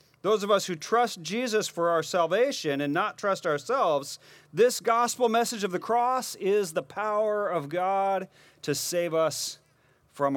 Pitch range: 145-215 Hz